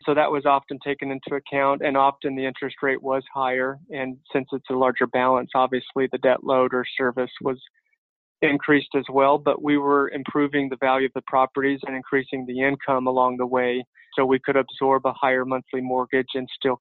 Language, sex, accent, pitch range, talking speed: English, male, American, 130-140 Hz, 200 wpm